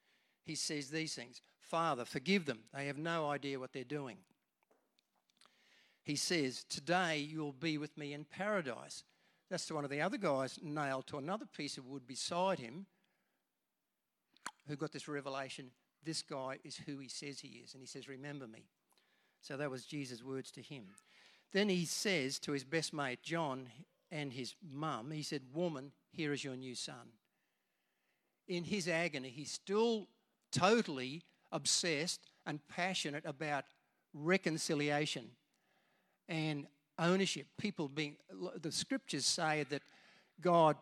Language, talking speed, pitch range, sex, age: English, 150 wpm, 140-170 Hz, male, 60-79